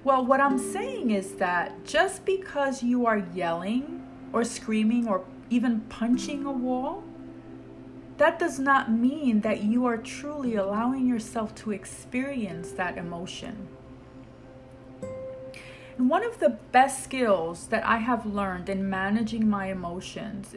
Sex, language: female, English